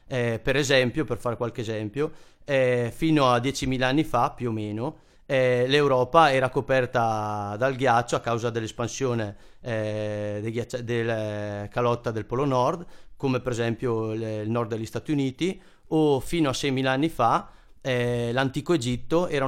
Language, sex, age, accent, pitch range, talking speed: Italian, male, 30-49, native, 115-140 Hz, 155 wpm